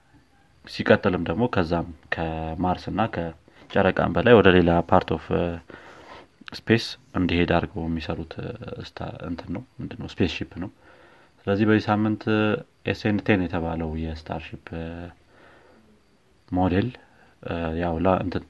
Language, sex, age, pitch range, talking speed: Amharic, male, 30-49, 85-100 Hz, 95 wpm